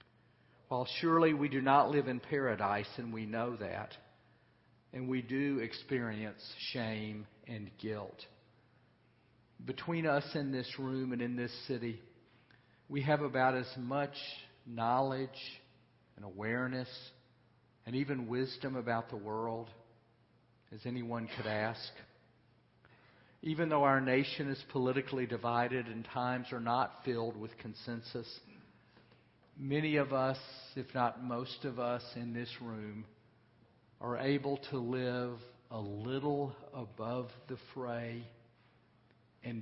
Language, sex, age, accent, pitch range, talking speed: English, male, 50-69, American, 115-135 Hz, 125 wpm